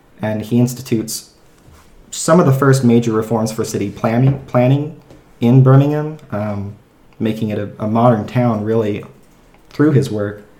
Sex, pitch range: male, 105-120 Hz